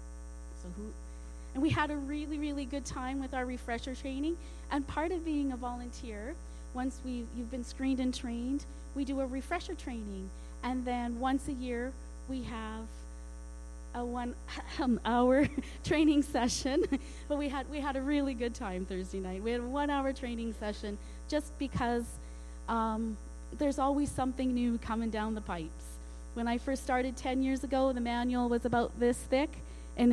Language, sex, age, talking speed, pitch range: English, female, 30-49, 170 wpm, 190-265 Hz